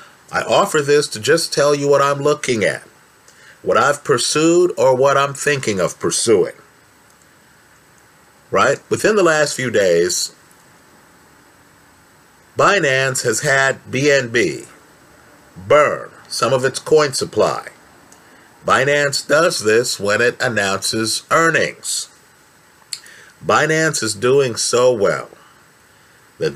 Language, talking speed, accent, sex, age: English, 110 wpm, American, male, 50-69